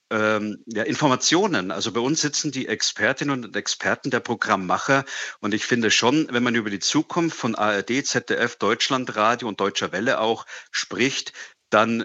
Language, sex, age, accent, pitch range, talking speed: German, male, 50-69, German, 105-135 Hz, 160 wpm